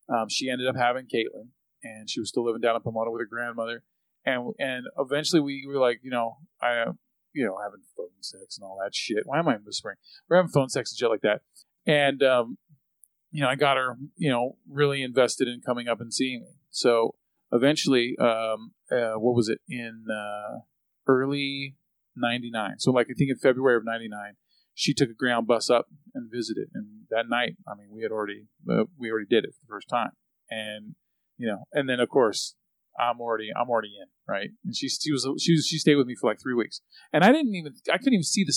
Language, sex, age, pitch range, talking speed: English, male, 40-59, 115-155 Hz, 225 wpm